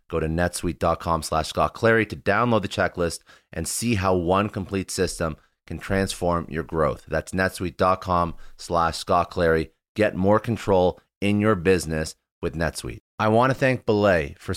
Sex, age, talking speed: male, 30-49, 160 wpm